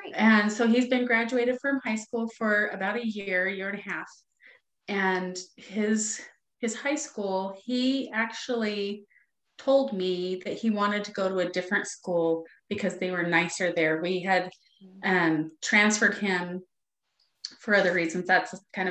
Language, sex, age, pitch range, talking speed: English, female, 30-49, 185-230 Hz, 155 wpm